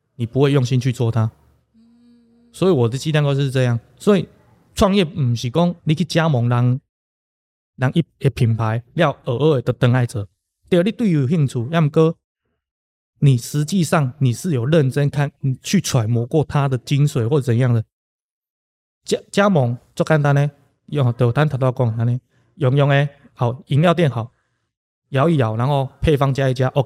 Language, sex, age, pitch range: English, male, 20-39, 120-155 Hz